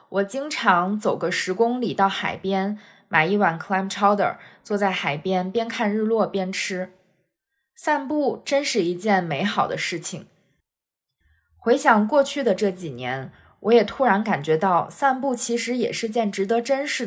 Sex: female